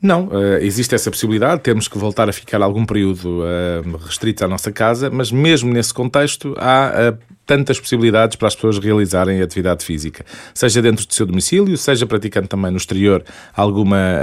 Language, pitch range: Portuguese, 100-130 Hz